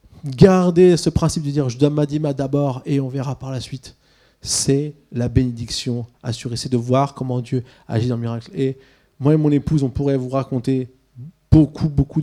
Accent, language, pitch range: French, French, 135-170 Hz